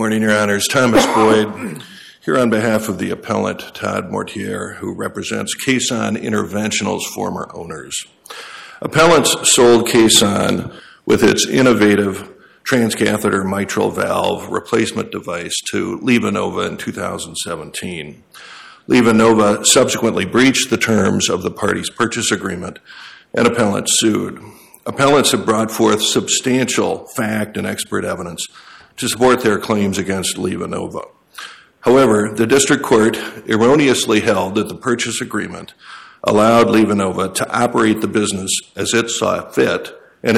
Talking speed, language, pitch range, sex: 125 wpm, English, 105-120 Hz, male